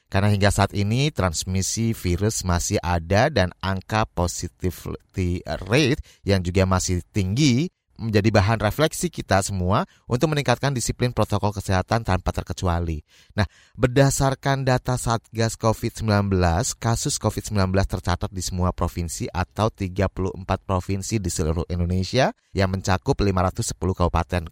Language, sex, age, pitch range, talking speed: Indonesian, male, 30-49, 90-120 Hz, 120 wpm